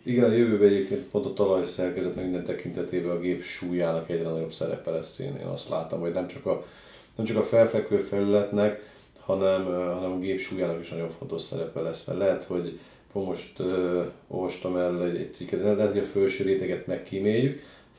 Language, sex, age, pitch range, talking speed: Hungarian, male, 40-59, 90-105 Hz, 180 wpm